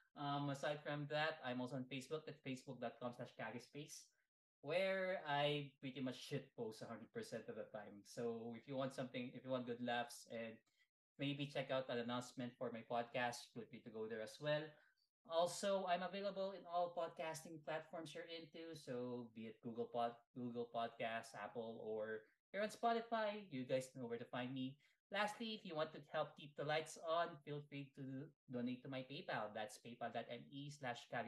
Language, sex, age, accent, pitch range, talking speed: Filipino, male, 20-39, native, 120-160 Hz, 185 wpm